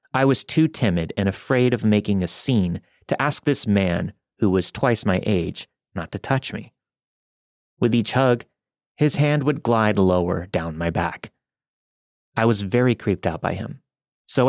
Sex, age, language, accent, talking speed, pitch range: male, 30-49, English, American, 175 wpm, 95-130 Hz